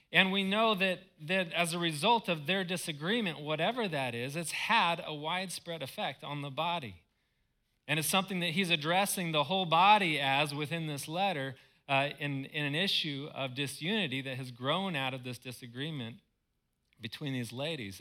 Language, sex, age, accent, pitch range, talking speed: English, male, 40-59, American, 125-170 Hz, 175 wpm